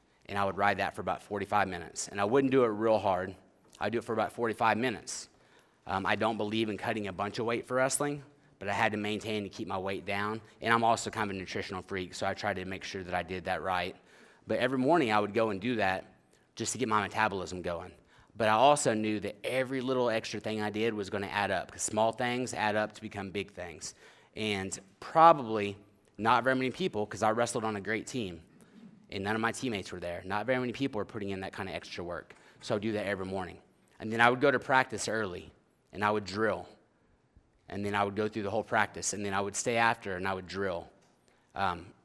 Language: English